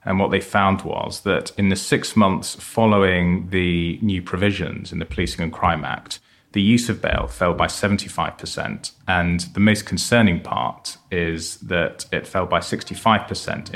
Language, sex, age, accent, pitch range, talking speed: English, male, 30-49, British, 85-105 Hz, 165 wpm